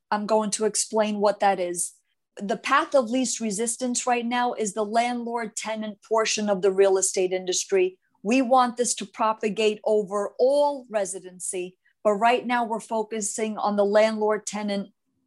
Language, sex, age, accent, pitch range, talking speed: English, female, 50-69, American, 205-240 Hz, 155 wpm